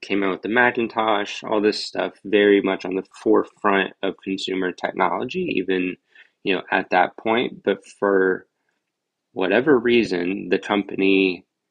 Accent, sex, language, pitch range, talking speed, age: American, male, English, 95-115 Hz, 145 wpm, 20-39